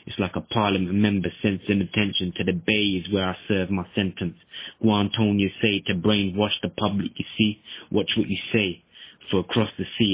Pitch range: 95-110 Hz